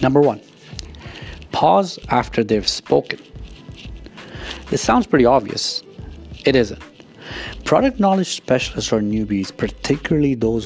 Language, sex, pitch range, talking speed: English, male, 105-130 Hz, 105 wpm